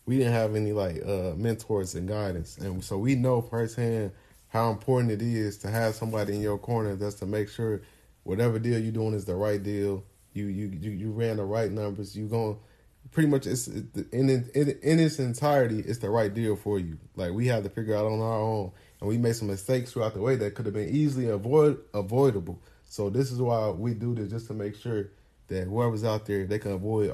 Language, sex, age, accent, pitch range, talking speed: English, male, 20-39, American, 100-120 Hz, 230 wpm